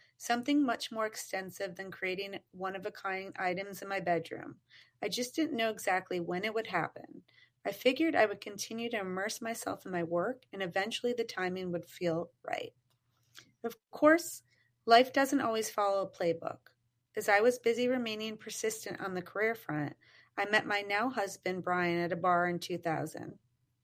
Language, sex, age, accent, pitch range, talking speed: English, female, 30-49, American, 175-220 Hz, 175 wpm